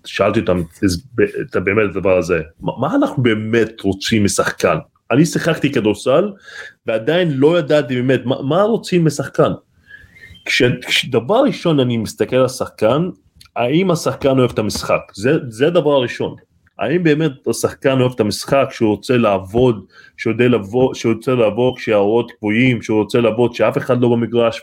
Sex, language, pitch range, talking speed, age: male, Hebrew, 105-145 Hz, 145 wpm, 20-39